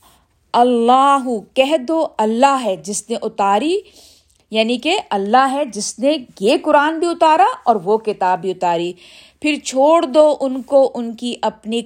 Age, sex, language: 50-69, female, Urdu